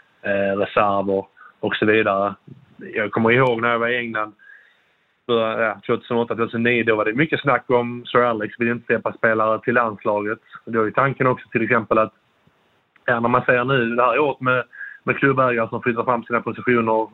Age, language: 30-49, Swedish